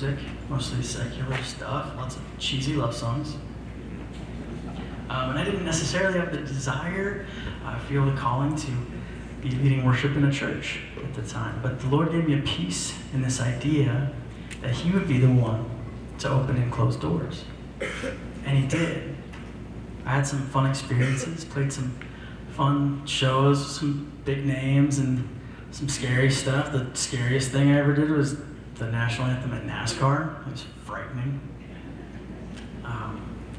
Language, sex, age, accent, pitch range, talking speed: English, male, 30-49, American, 125-140 Hz, 155 wpm